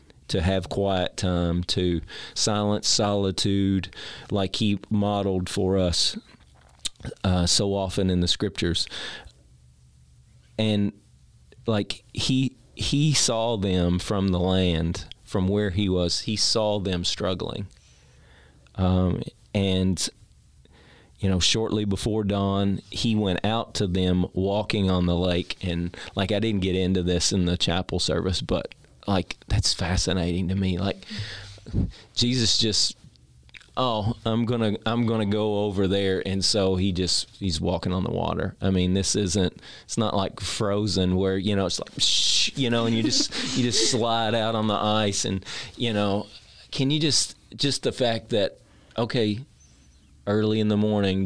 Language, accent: English, American